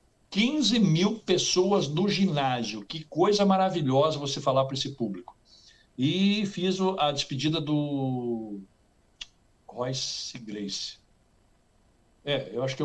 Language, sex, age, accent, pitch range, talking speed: English, male, 60-79, Brazilian, 125-180 Hz, 110 wpm